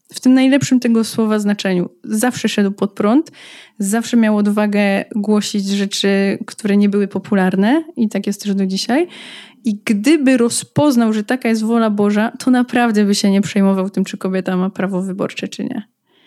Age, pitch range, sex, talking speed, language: 20-39, 205-245 Hz, female, 175 wpm, English